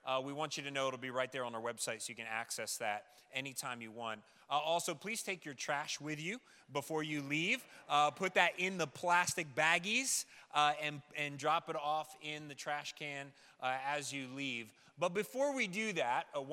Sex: male